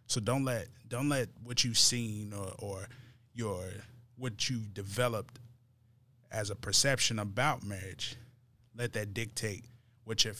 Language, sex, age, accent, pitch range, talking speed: English, male, 20-39, American, 105-120 Hz, 140 wpm